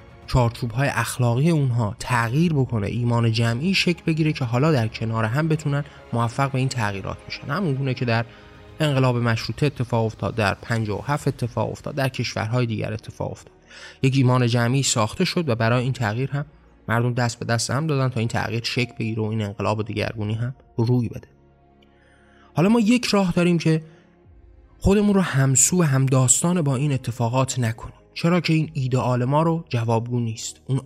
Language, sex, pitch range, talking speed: Persian, male, 115-155 Hz, 180 wpm